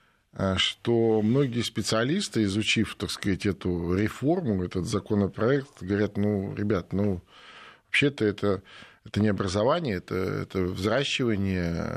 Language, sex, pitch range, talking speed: Russian, male, 90-115 Hz, 110 wpm